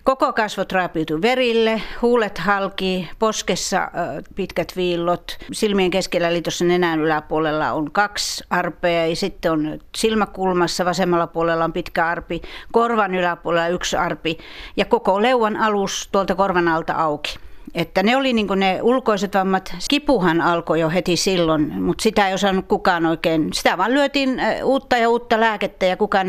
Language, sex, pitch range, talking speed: Finnish, female, 170-230 Hz, 150 wpm